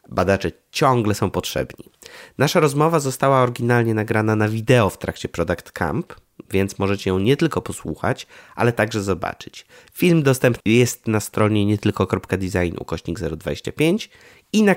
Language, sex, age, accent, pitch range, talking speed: Polish, male, 20-39, native, 90-120 Hz, 140 wpm